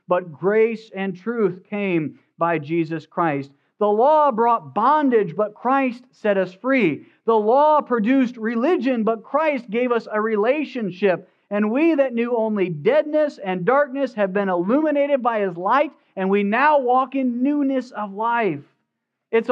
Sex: male